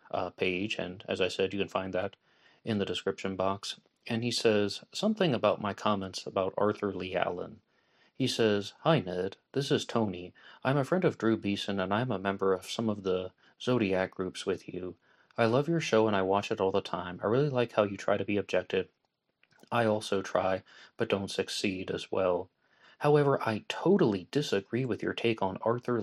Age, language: 30-49, English